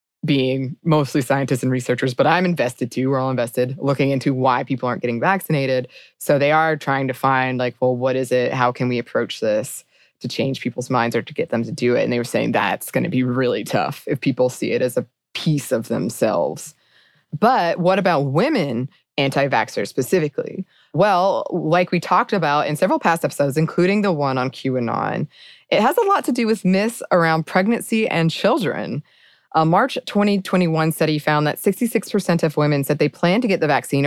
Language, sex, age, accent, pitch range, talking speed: English, female, 20-39, American, 135-180 Hz, 200 wpm